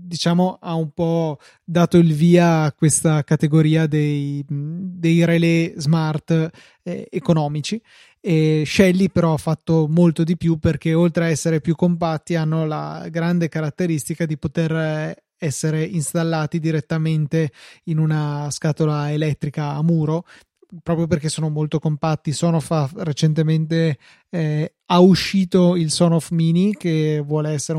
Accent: native